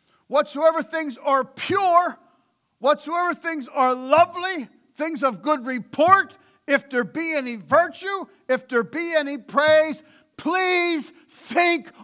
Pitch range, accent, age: 245-300 Hz, American, 50-69